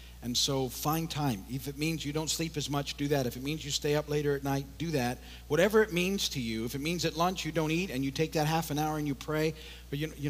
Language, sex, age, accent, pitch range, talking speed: English, male, 50-69, American, 120-150 Hz, 295 wpm